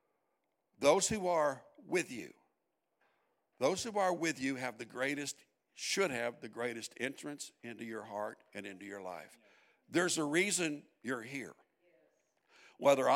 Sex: male